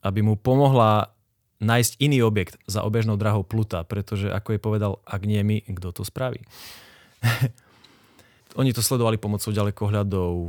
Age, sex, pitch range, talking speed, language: 20-39, male, 100-120 Hz, 145 wpm, Slovak